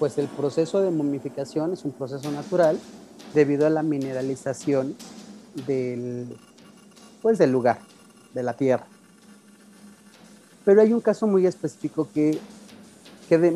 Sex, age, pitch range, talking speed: male, 40-59, 140-205 Hz, 120 wpm